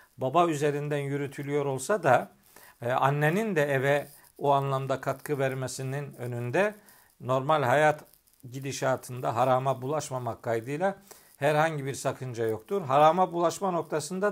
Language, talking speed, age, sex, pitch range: Turkish, 115 wpm, 50-69, male, 140-165 Hz